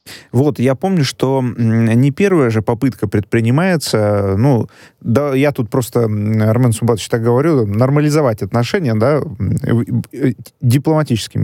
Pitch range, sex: 110-145 Hz, male